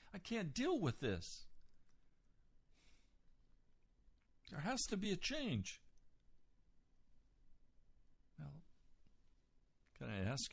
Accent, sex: American, male